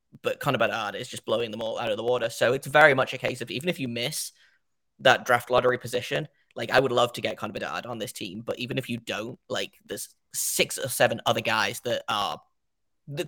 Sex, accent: male, British